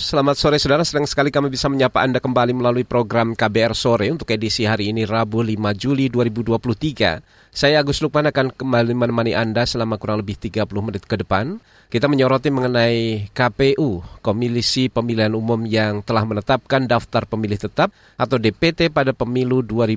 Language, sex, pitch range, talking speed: Indonesian, male, 110-140 Hz, 160 wpm